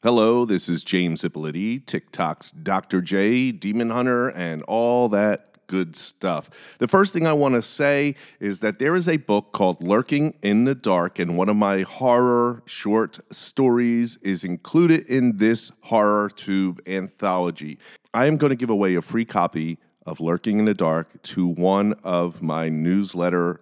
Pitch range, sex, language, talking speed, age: 90-125 Hz, male, English, 170 wpm, 40-59